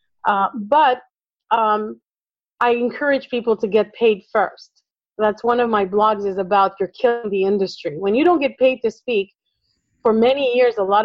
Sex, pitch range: female, 215-265 Hz